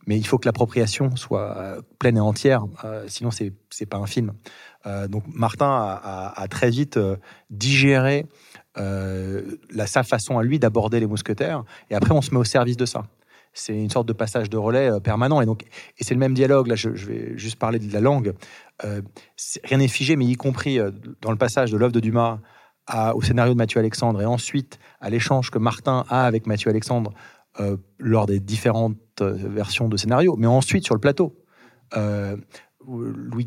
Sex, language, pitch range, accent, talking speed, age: male, French, 105-130 Hz, French, 205 wpm, 30-49